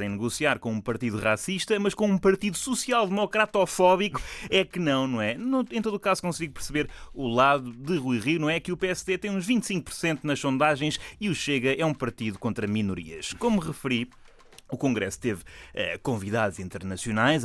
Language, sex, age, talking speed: Portuguese, male, 20-39, 180 wpm